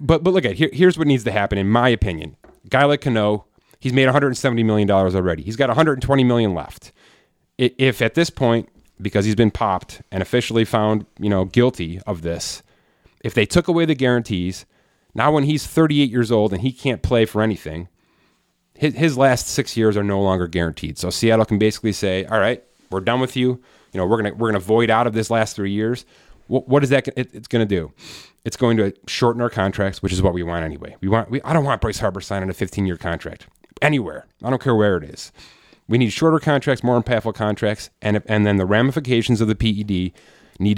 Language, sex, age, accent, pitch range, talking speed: English, male, 30-49, American, 100-135 Hz, 220 wpm